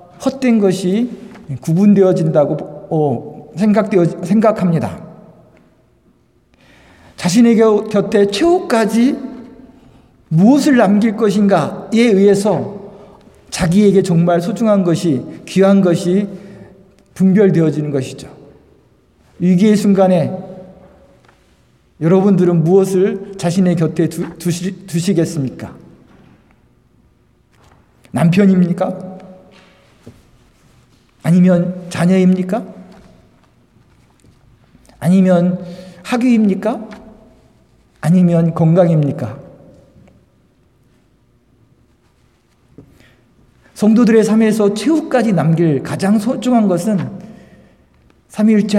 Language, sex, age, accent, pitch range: Korean, male, 50-69, native, 170-205 Hz